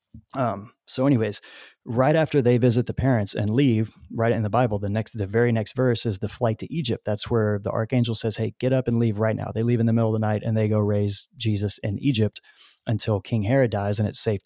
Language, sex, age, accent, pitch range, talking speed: English, male, 30-49, American, 105-120 Hz, 250 wpm